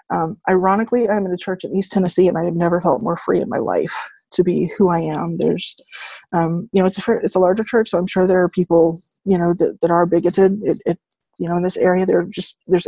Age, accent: 20-39, American